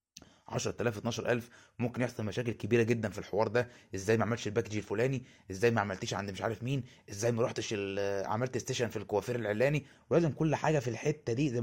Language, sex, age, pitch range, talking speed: Arabic, male, 20-39, 105-135 Hz, 190 wpm